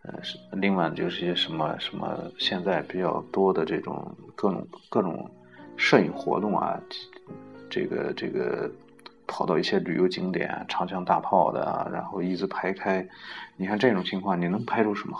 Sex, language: male, Chinese